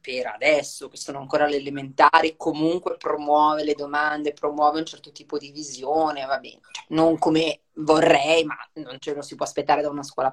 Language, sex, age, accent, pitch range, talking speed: Italian, female, 20-39, native, 150-185 Hz, 190 wpm